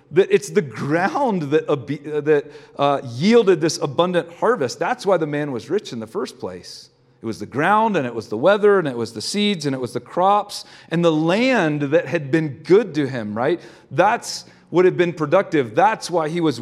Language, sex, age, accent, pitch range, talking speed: English, male, 40-59, American, 140-185 Hz, 215 wpm